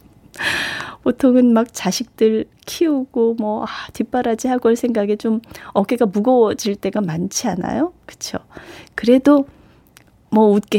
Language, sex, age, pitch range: Korean, female, 30-49, 180-245 Hz